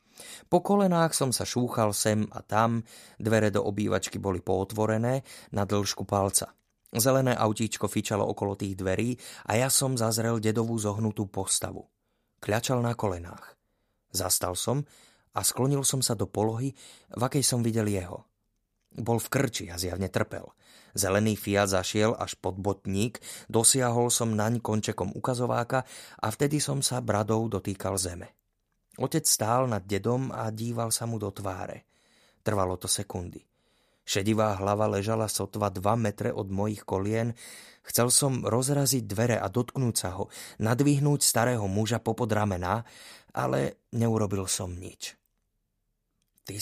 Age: 30-49